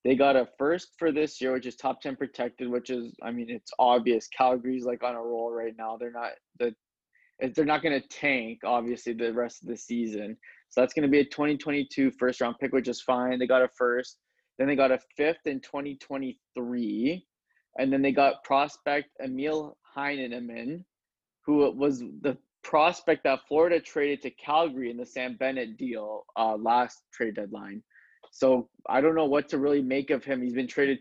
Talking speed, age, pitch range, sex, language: 195 wpm, 20-39, 120-140 Hz, male, English